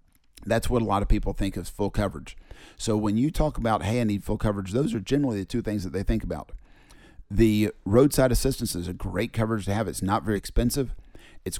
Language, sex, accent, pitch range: English, male, American, 95-115 Hz